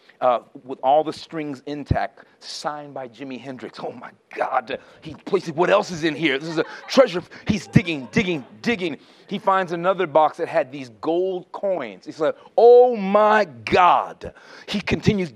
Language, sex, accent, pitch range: English, male, American, 155-220 Hz